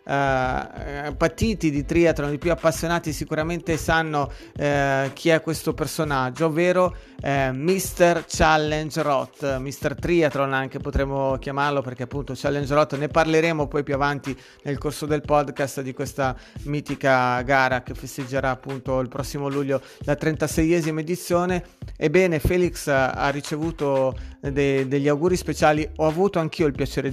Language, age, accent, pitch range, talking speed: Italian, 30-49, native, 135-155 Hz, 130 wpm